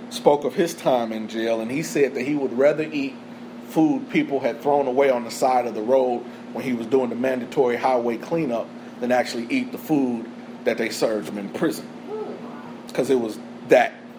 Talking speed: 205 wpm